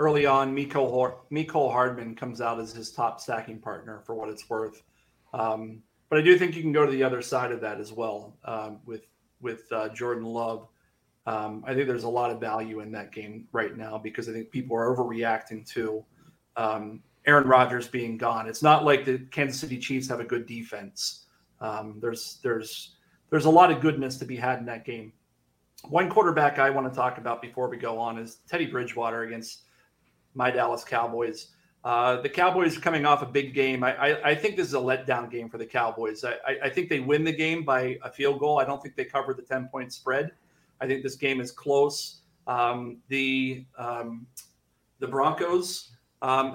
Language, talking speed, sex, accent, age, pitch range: English, 205 wpm, male, American, 40-59, 115-145 Hz